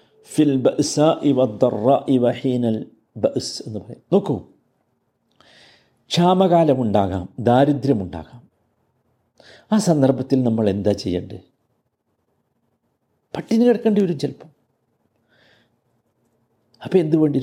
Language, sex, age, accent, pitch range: Malayalam, male, 50-69, native, 130-195 Hz